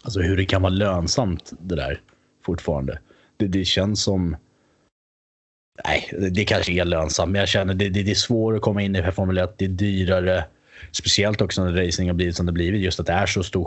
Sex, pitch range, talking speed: male, 90-105 Hz, 225 wpm